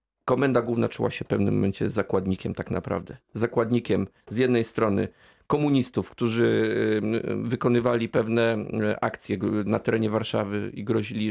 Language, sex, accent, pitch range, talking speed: Polish, male, native, 110-135 Hz, 125 wpm